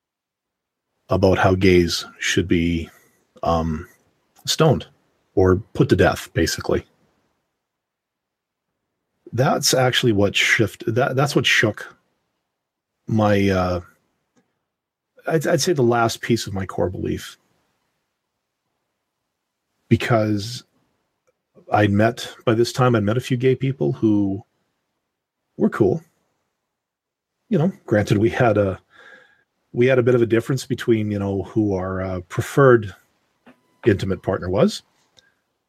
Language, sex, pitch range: English, male, 105-130 Hz